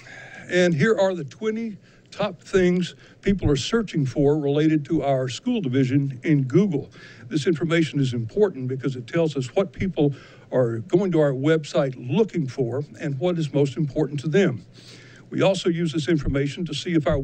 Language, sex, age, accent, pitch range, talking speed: English, male, 60-79, American, 135-175 Hz, 180 wpm